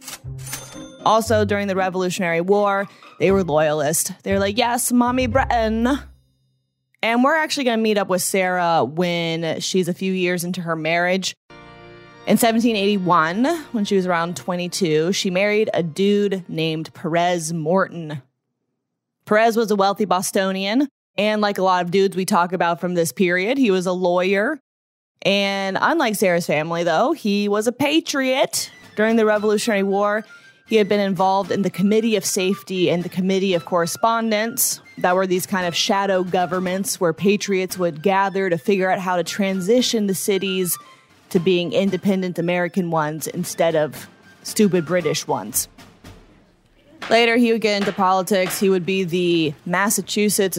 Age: 20-39